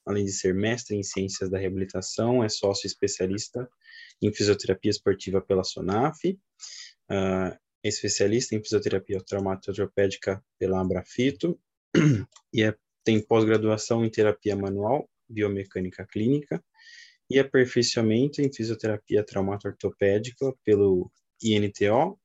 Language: Portuguese